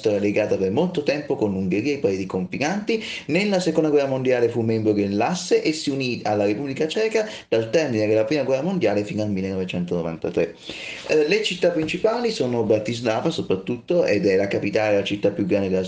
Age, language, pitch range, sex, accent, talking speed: 30-49, Italian, 105-165 Hz, male, native, 185 wpm